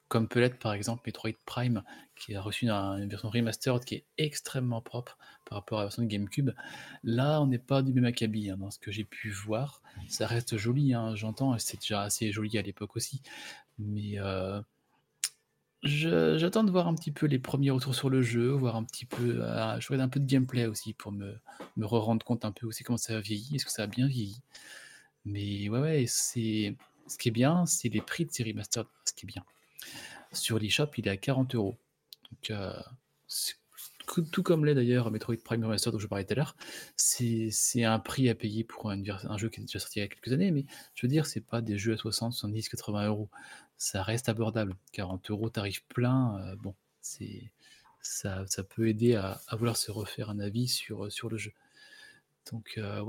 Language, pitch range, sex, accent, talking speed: French, 105-130 Hz, male, French, 220 wpm